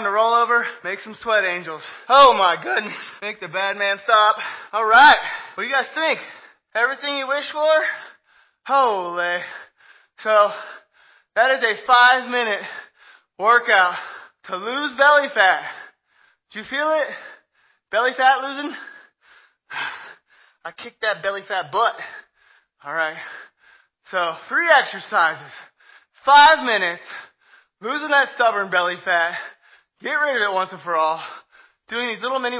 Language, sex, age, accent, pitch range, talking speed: English, male, 20-39, American, 195-275 Hz, 135 wpm